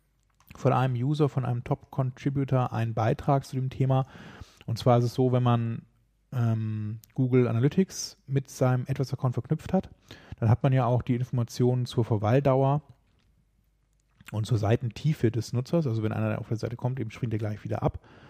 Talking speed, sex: 175 wpm, male